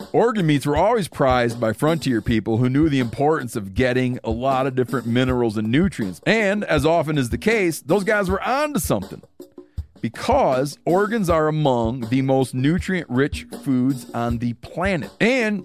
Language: English